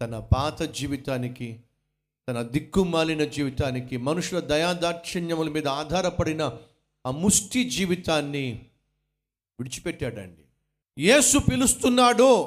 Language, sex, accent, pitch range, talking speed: Telugu, male, native, 120-170 Hz, 80 wpm